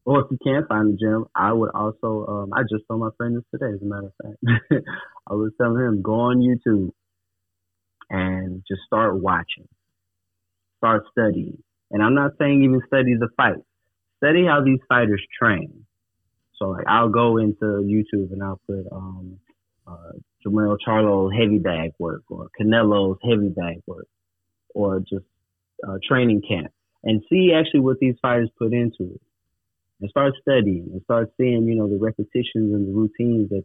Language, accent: English, American